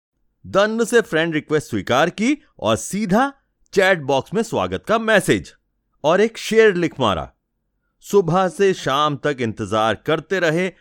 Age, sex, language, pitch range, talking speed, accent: 30-49, male, Hindi, 125-200 Hz, 145 wpm, native